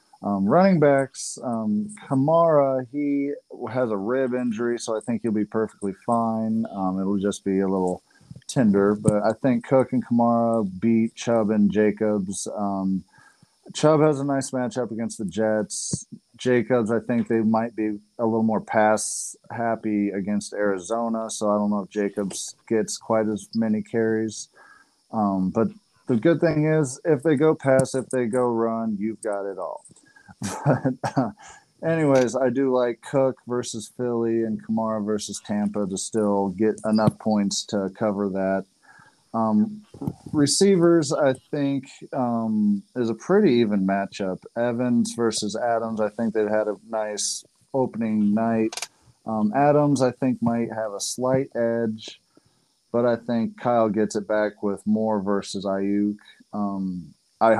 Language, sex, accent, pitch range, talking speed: English, male, American, 105-125 Hz, 155 wpm